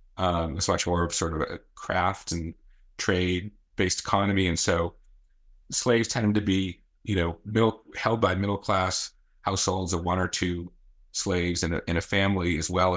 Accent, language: American, English